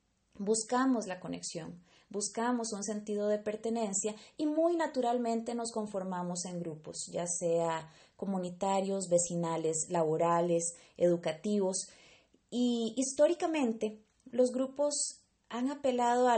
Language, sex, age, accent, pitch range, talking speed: English, female, 30-49, Colombian, 185-250 Hz, 105 wpm